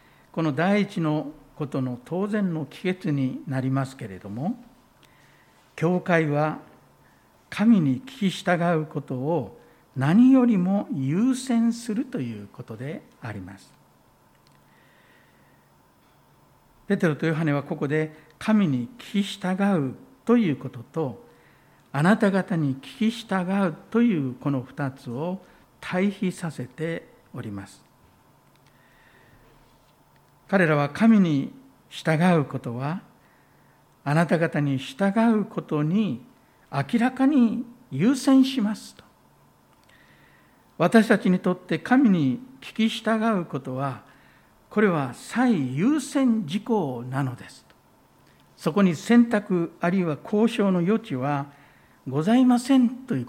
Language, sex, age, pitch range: Japanese, male, 60-79, 135-210 Hz